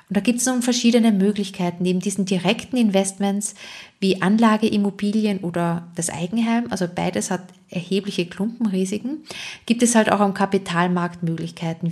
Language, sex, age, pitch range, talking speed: German, female, 20-39, 175-210 Hz, 140 wpm